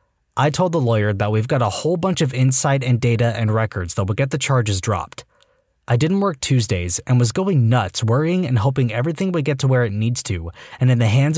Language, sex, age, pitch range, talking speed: English, male, 20-39, 110-160 Hz, 235 wpm